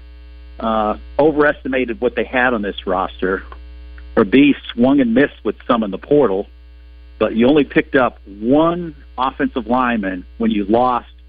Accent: American